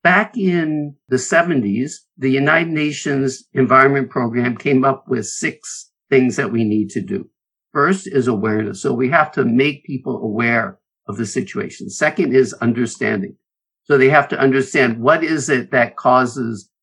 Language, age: English, 50-69